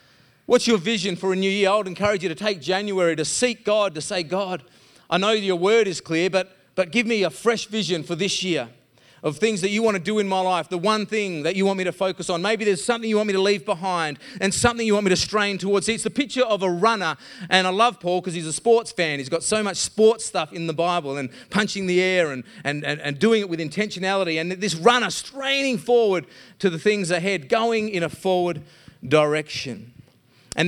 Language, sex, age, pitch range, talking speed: English, male, 30-49, 150-205 Hz, 245 wpm